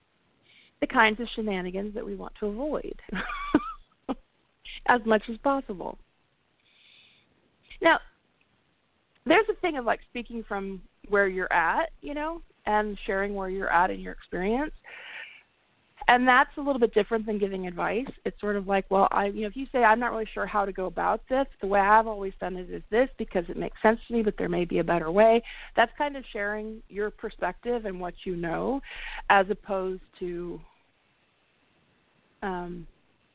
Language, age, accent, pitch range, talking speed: English, 40-59, American, 195-240 Hz, 175 wpm